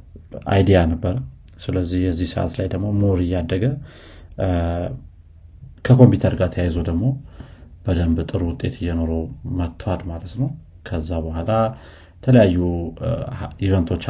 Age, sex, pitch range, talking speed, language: 30-49, male, 85-105 Hz, 100 wpm, Amharic